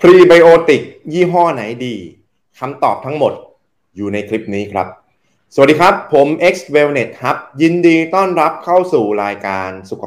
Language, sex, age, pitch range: Thai, male, 20-39, 100-140 Hz